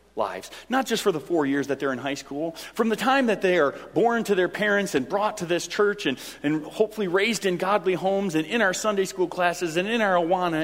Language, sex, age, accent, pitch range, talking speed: English, male, 40-59, American, 155-195 Hz, 250 wpm